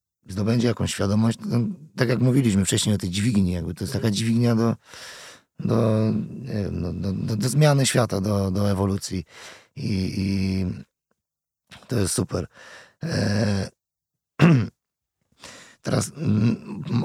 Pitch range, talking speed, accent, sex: 95-115 Hz, 125 wpm, native, male